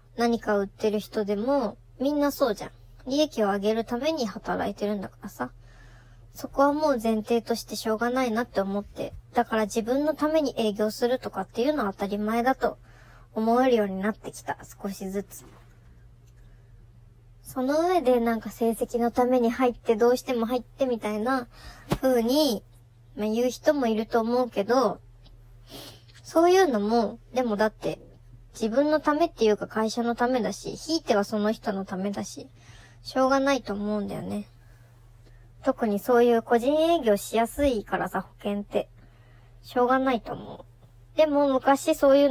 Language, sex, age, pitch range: Japanese, male, 20-39, 195-250 Hz